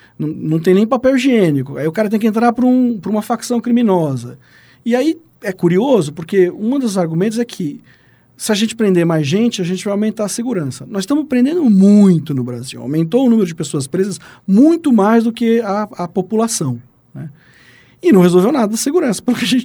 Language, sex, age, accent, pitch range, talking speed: Portuguese, male, 40-59, Brazilian, 165-235 Hz, 205 wpm